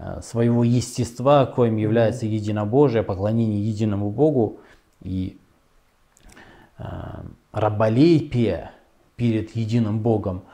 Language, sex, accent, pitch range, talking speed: Russian, male, native, 110-125 Hz, 80 wpm